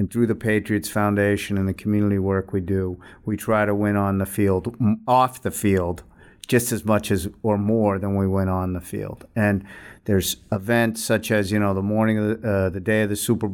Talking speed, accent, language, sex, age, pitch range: 220 wpm, American, English, male, 50-69, 95-110 Hz